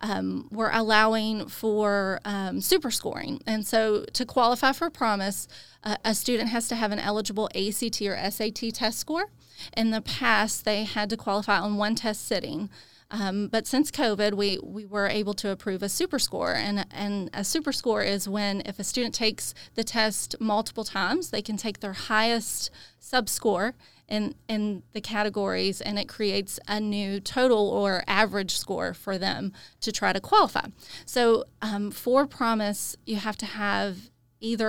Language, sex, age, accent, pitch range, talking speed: English, female, 30-49, American, 200-225 Hz, 170 wpm